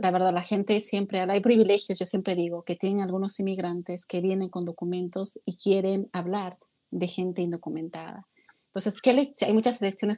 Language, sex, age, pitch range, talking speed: Spanish, female, 30-49, 180-210 Hz, 185 wpm